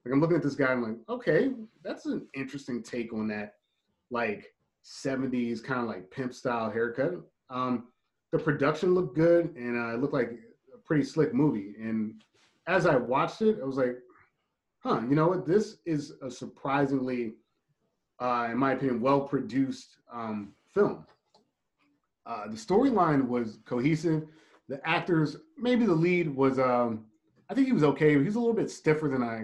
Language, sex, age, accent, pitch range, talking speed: English, male, 30-49, American, 120-155 Hz, 170 wpm